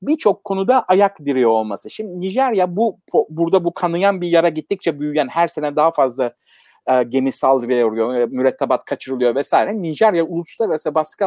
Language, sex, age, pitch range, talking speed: Turkish, male, 50-69, 145-210 Hz, 145 wpm